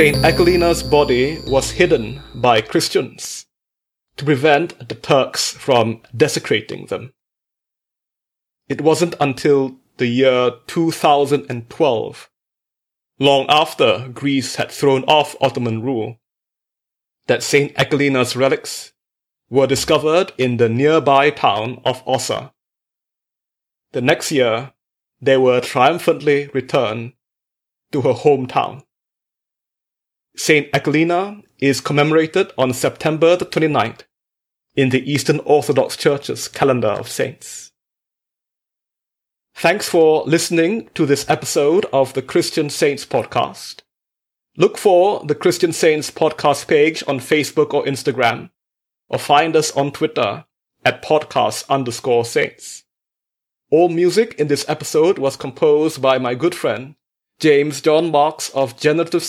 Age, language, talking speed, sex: 30-49, English, 115 wpm, male